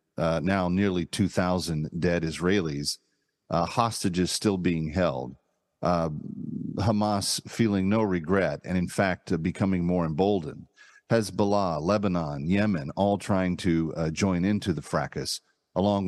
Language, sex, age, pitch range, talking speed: English, male, 40-59, 80-105 Hz, 130 wpm